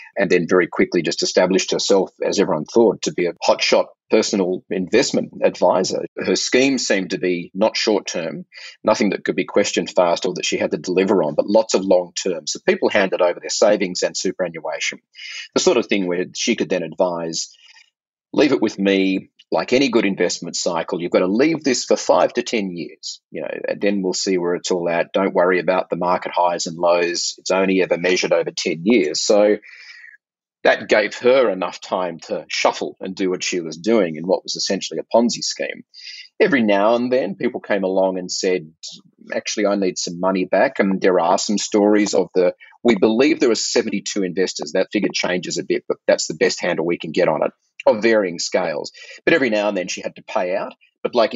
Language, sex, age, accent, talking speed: English, male, 30-49, Australian, 210 wpm